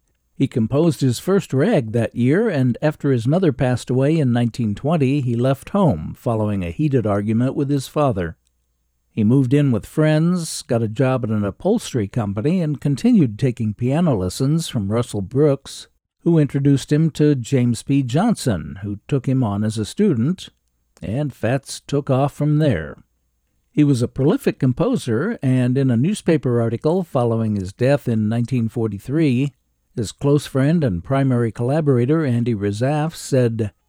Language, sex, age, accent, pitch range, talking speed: English, male, 60-79, American, 110-150 Hz, 160 wpm